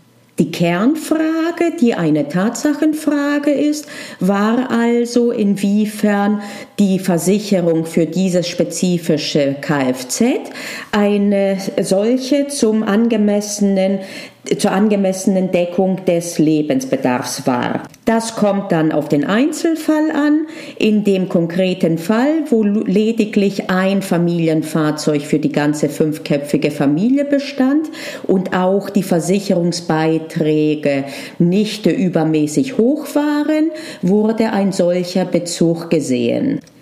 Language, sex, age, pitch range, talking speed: German, female, 40-59, 175-260 Hz, 95 wpm